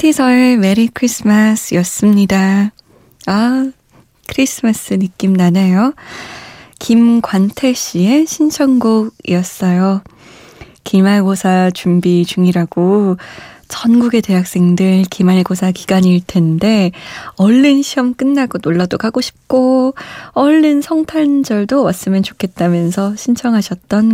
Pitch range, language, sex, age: 180-245 Hz, Korean, female, 20-39